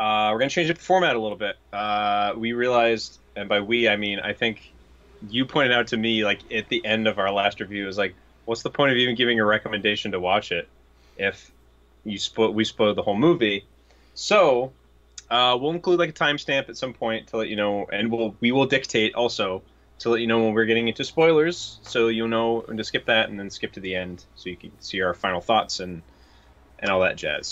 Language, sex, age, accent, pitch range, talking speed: English, male, 20-39, American, 90-120 Hz, 235 wpm